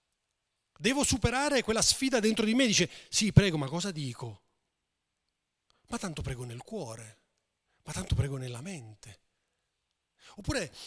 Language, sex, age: Italian, male, 40-59